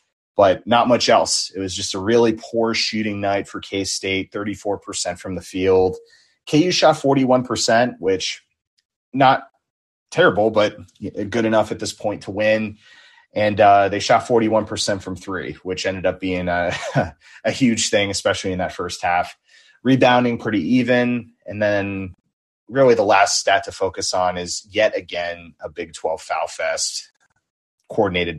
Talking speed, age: 155 wpm, 30-49